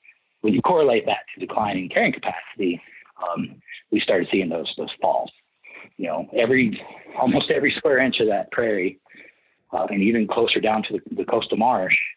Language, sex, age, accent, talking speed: English, male, 40-59, American, 170 wpm